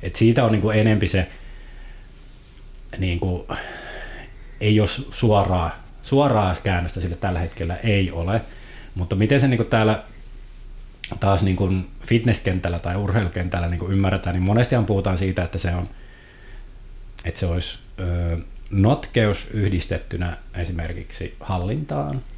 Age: 30-49